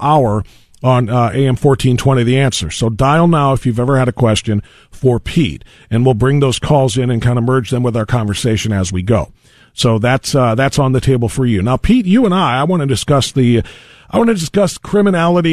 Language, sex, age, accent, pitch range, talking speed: English, male, 40-59, American, 115-140 Hz, 230 wpm